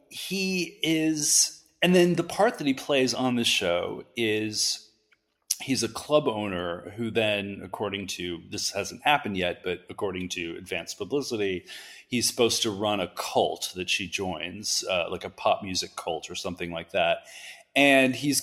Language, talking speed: English, 165 wpm